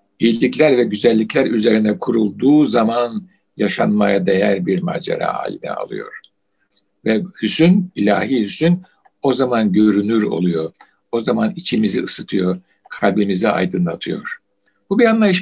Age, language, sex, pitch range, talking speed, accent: 60-79, Turkish, male, 110-170 Hz, 115 wpm, native